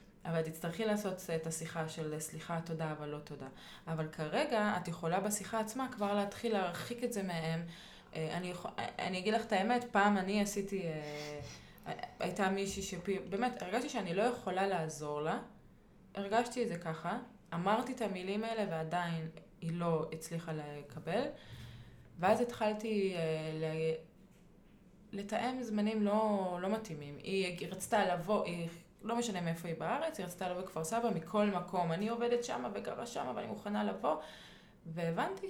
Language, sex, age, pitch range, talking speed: Hebrew, female, 20-39, 165-215 Hz, 150 wpm